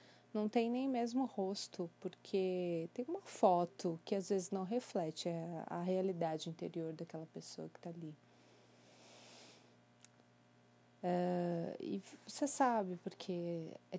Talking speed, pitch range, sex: 120 wpm, 155-185 Hz, female